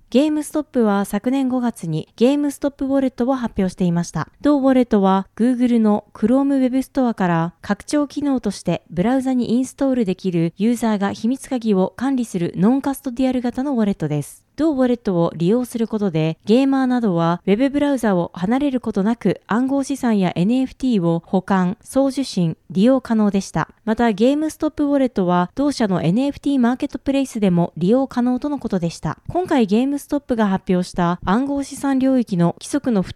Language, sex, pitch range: Japanese, female, 190-270 Hz